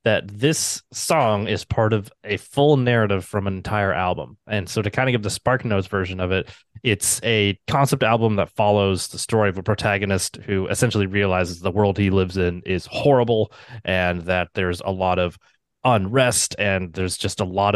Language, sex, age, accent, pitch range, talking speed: English, male, 20-39, American, 95-115 Hz, 195 wpm